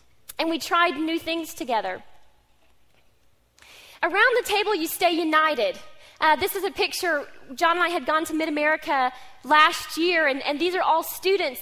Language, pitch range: English, 285-335 Hz